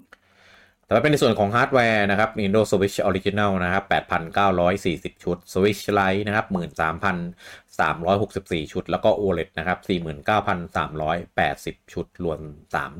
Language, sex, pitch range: Thai, male, 85-105 Hz